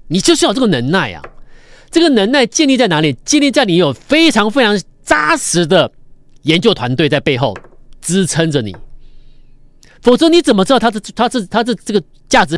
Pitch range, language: 155-240 Hz, Chinese